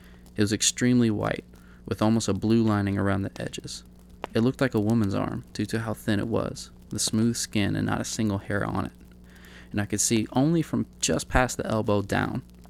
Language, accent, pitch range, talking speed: English, American, 90-110 Hz, 215 wpm